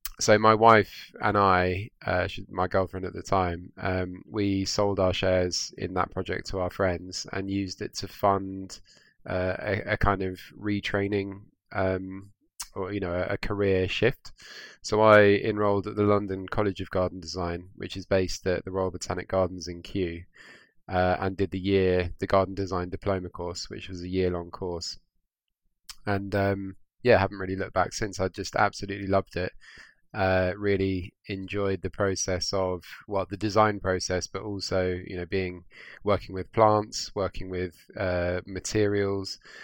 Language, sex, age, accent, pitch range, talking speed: English, male, 20-39, British, 90-100 Hz, 170 wpm